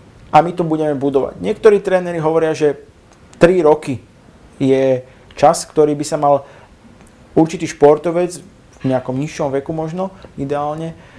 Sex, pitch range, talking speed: male, 130-165 Hz, 135 wpm